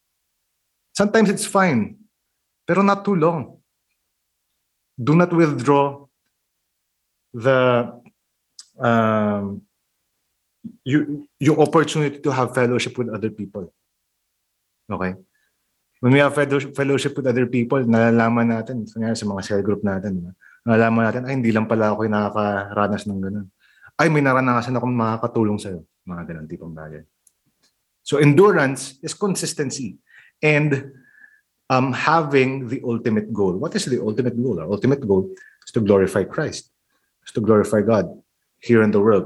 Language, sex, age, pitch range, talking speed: English, male, 20-39, 105-135 Hz, 135 wpm